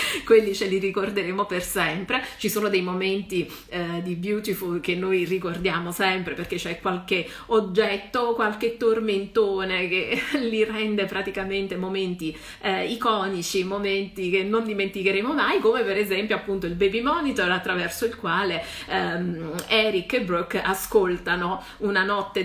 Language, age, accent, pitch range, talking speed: Italian, 30-49, native, 180-225 Hz, 140 wpm